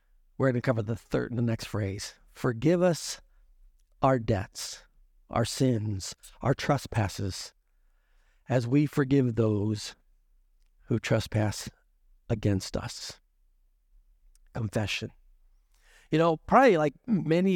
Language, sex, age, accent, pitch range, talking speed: English, male, 50-69, American, 110-160 Hz, 110 wpm